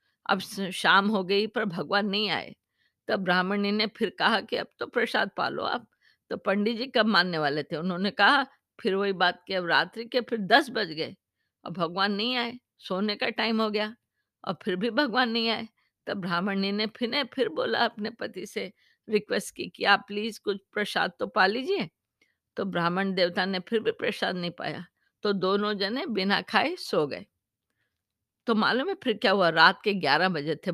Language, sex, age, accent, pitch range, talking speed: Hindi, female, 50-69, native, 180-230 Hz, 195 wpm